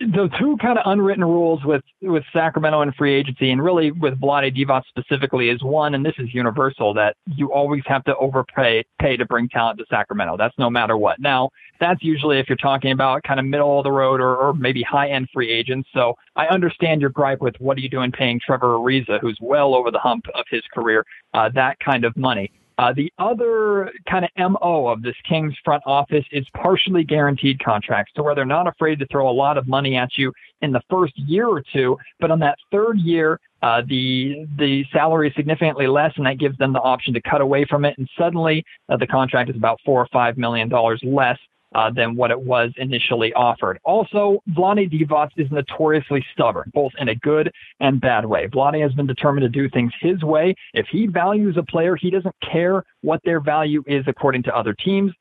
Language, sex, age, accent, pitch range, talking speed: English, male, 40-59, American, 130-160 Hz, 220 wpm